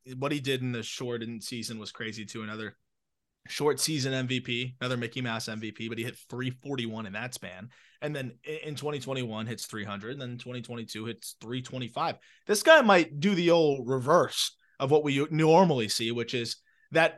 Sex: male